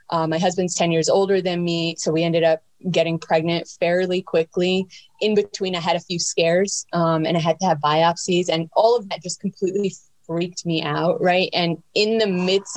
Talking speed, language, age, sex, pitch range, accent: 205 wpm, English, 20-39, female, 160-180 Hz, American